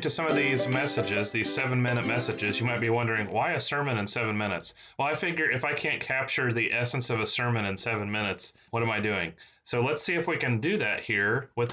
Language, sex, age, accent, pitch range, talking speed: English, male, 30-49, American, 110-130 Hz, 245 wpm